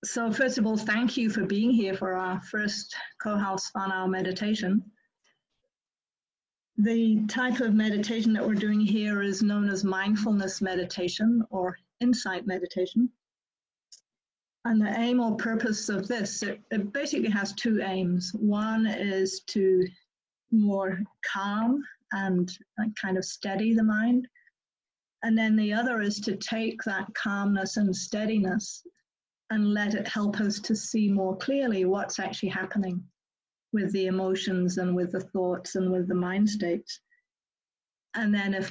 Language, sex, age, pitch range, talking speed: English, female, 40-59, 185-220 Hz, 145 wpm